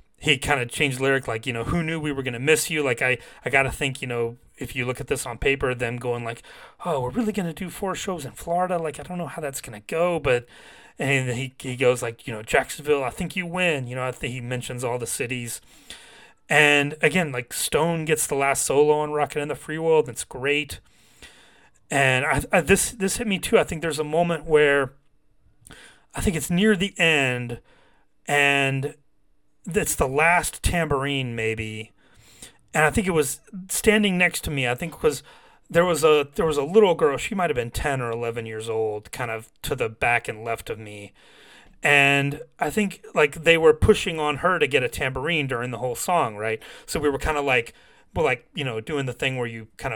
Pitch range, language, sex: 125-170 Hz, English, male